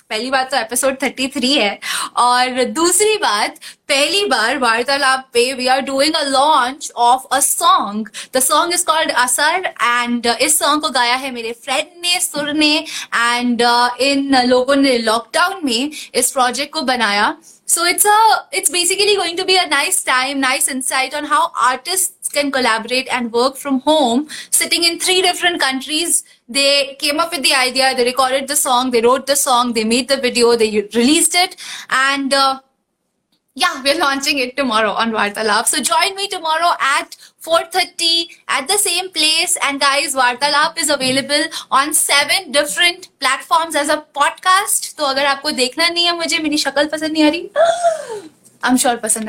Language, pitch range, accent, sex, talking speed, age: Hindi, 250-330 Hz, native, female, 175 wpm, 20-39